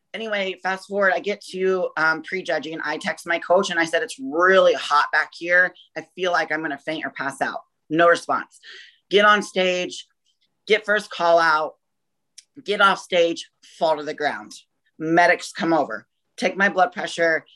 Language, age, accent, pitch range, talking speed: English, 30-49, American, 160-190 Hz, 180 wpm